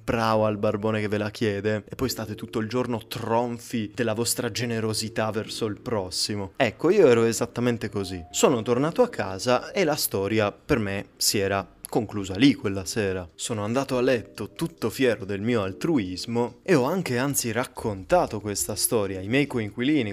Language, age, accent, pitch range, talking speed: Italian, 20-39, native, 105-130 Hz, 175 wpm